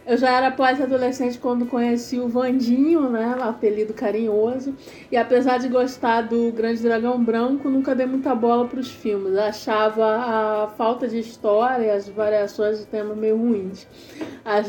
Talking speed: 170 wpm